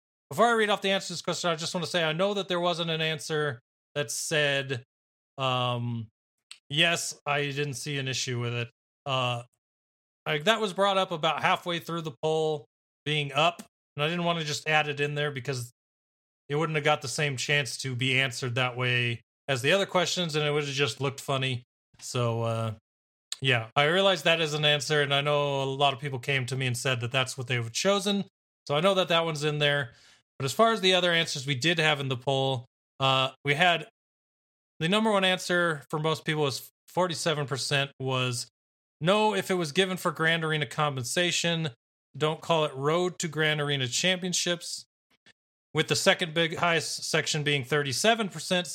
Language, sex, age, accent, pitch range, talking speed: English, male, 30-49, American, 135-170 Hz, 200 wpm